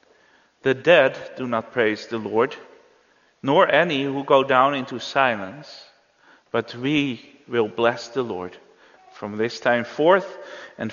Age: 40-59